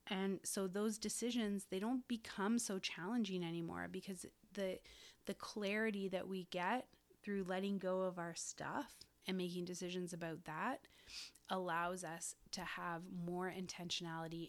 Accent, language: American, English